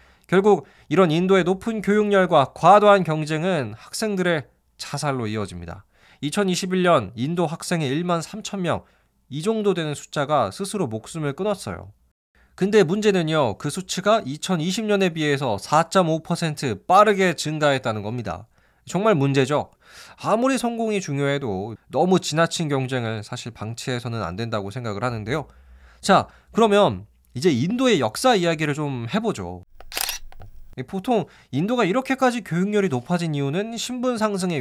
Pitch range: 115-195 Hz